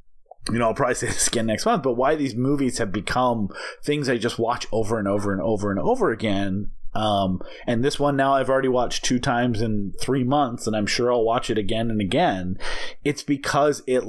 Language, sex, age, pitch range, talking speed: English, male, 30-49, 110-145 Hz, 220 wpm